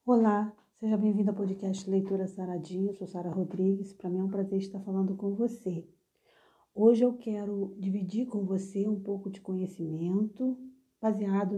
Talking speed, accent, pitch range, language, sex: 155 wpm, Brazilian, 185-235 Hz, Portuguese, female